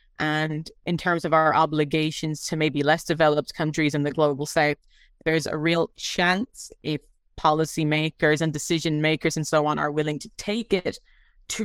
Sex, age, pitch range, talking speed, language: female, 30-49, 150-170 Hz, 170 wpm, English